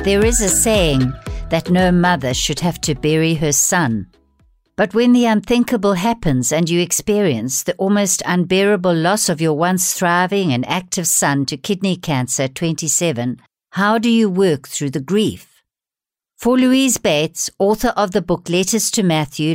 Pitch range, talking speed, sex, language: 145-205 Hz, 165 wpm, female, English